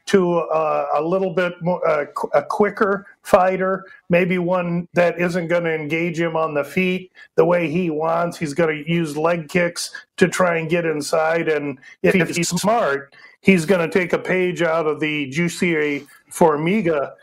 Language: English